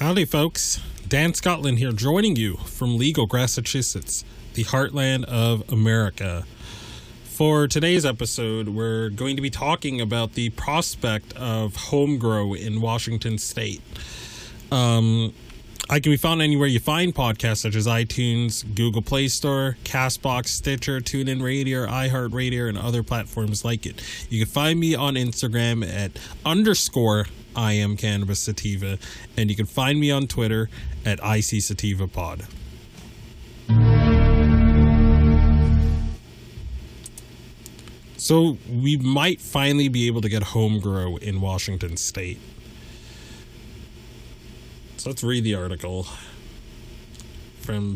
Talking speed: 125 wpm